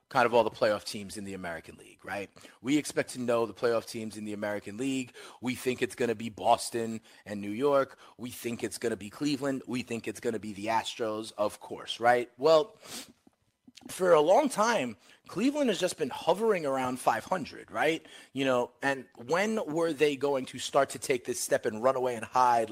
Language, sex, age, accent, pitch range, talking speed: English, male, 30-49, American, 115-155 Hz, 215 wpm